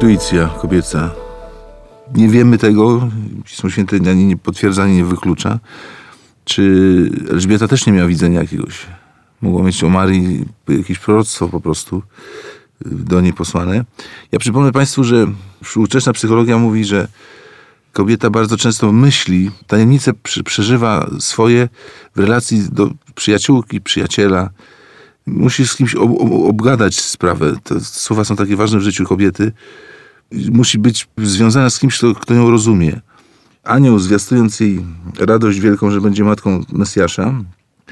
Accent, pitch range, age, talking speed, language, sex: native, 95-120 Hz, 40-59, 135 wpm, Polish, male